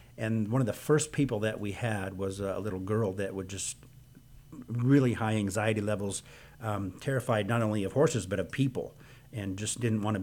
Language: English